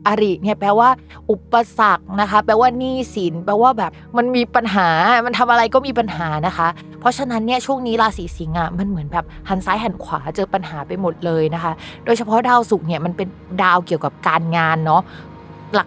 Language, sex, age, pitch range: Thai, female, 20-39, 180-235 Hz